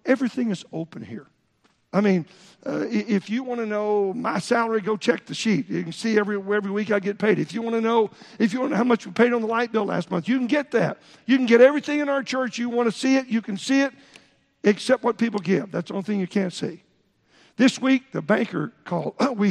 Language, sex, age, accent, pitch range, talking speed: English, male, 50-69, American, 185-230 Hz, 260 wpm